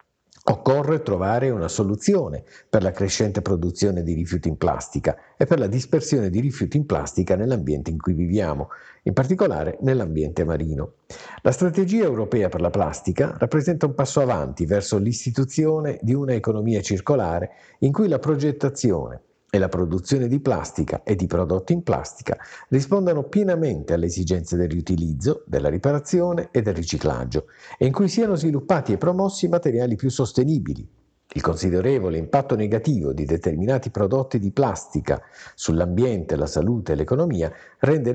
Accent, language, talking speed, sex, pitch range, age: native, Italian, 150 wpm, male, 90-145 Hz, 50-69